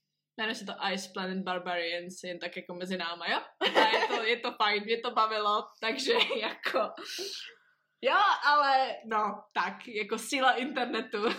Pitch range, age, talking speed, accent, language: 195-260 Hz, 20-39, 160 wpm, native, Czech